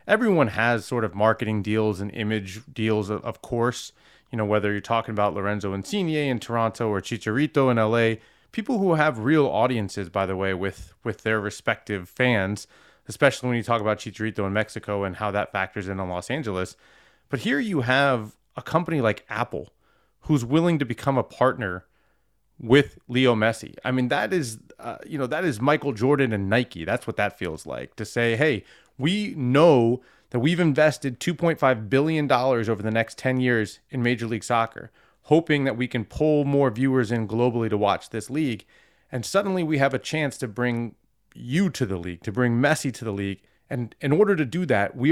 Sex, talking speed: male, 195 wpm